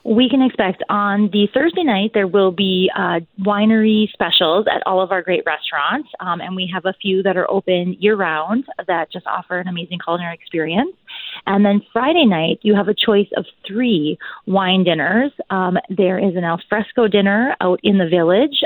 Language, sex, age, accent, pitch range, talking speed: English, female, 30-49, American, 175-215 Hz, 185 wpm